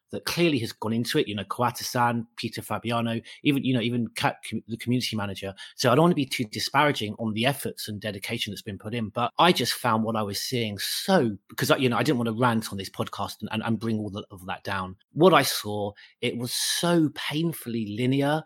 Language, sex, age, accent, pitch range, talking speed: English, male, 30-49, British, 110-140 Hz, 235 wpm